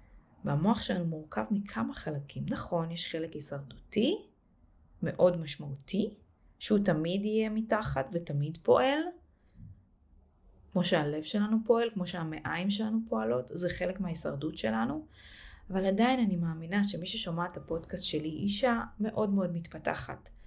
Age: 20-39